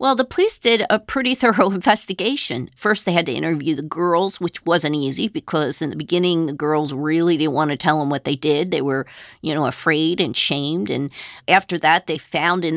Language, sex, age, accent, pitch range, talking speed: English, female, 40-59, American, 160-200 Hz, 215 wpm